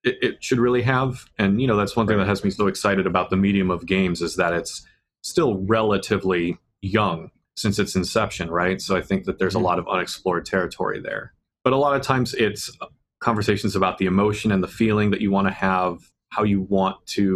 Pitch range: 95-110 Hz